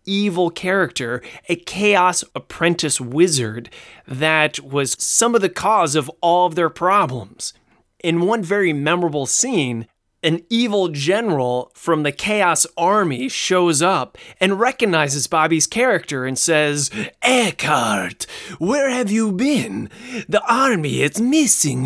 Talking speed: 125 wpm